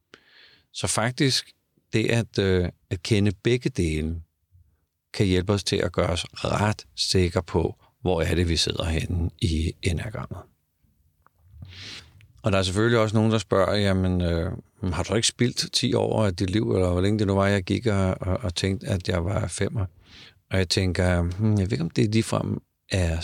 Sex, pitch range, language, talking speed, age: male, 90-110 Hz, Danish, 185 wpm, 50-69